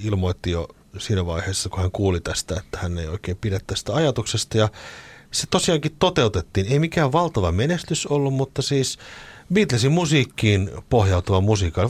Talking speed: 150 wpm